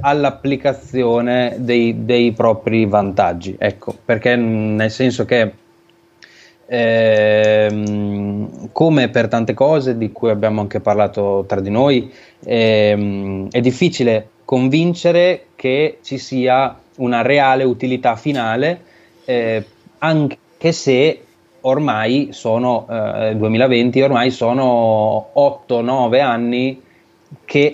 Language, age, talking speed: Italian, 20-39, 100 wpm